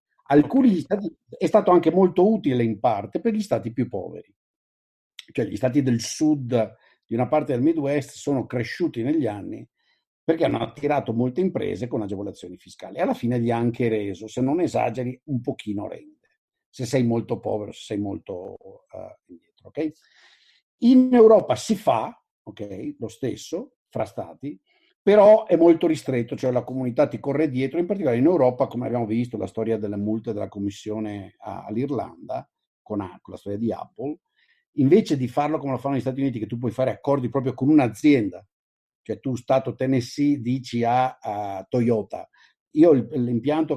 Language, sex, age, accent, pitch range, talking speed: Italian, male, 50-69, native, 115-160 Hz, 170 wpm